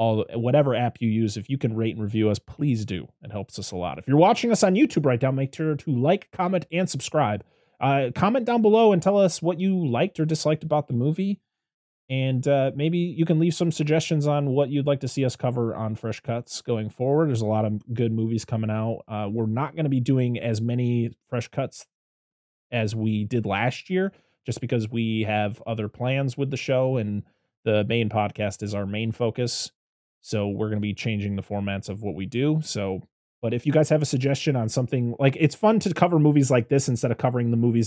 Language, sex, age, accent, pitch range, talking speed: English, male, 30-49, American, 110-145 Hz, 230 wpm